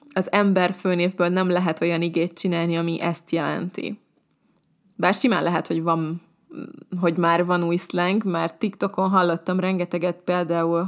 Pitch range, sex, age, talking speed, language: 170-200 Hz, female, 20-39, 145 wpm, Hungarian